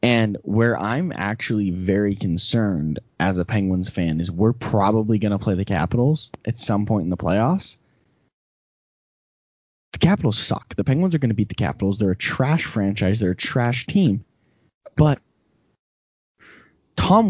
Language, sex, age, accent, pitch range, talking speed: English, male, 20-39, American, 110-180 Hz, 155 wpm